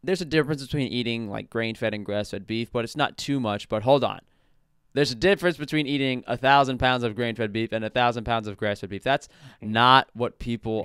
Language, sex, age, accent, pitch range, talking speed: English, male, 20-39, American, 105-130 Hz, 210 wpm